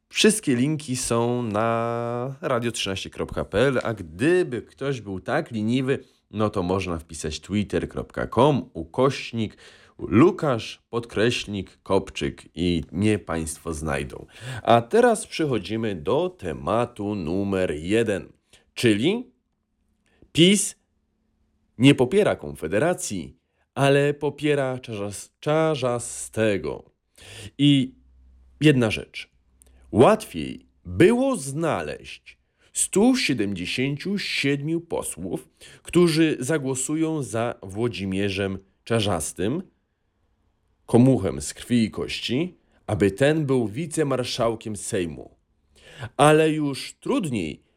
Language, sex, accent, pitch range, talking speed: Polish, male, native, 90-135 Hz, 80 wpm